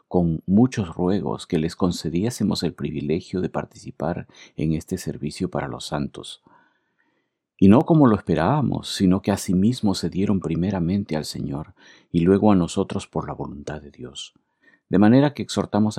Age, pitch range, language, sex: 50-69, 80-100 Hz, Spanish, male